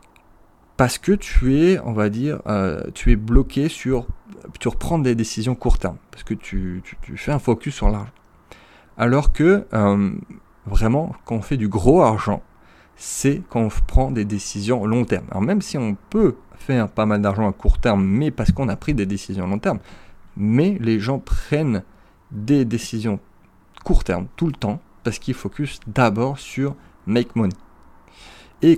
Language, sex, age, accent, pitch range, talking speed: French, male, 30-49, French, 100-130 Hz, 180 wpm